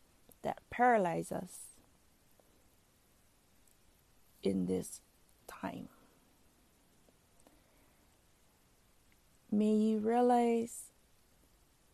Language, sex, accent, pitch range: English, female, American, 165-195 Hz